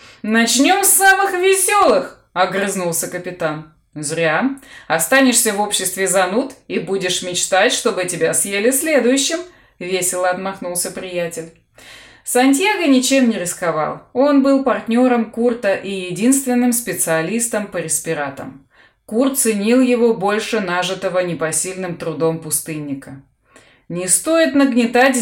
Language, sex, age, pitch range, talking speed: Russian, female, 20-39, 170-245 Hz, 105 wpm